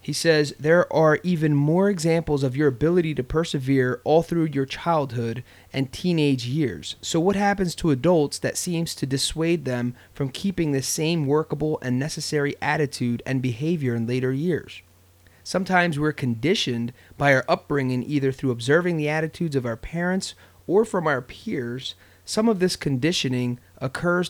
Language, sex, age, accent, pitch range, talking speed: English, male, 30-49, American, 125-160 Hz, 160 wpm